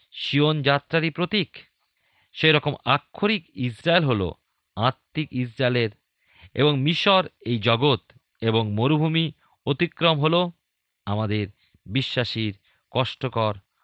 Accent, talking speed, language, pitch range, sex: native, 80 wpm, Bengali, 105-150 Hz, male